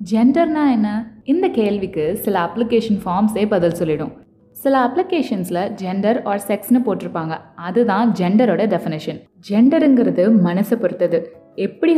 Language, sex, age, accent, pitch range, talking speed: Tamil, female, 20-39, native, 175-240 Hz, 110 wpm